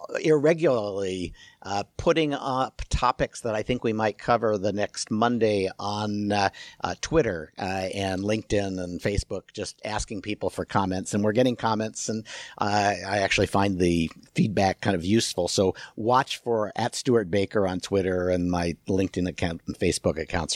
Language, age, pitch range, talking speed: English, 50-69, 95-115 Hz, 165 wpm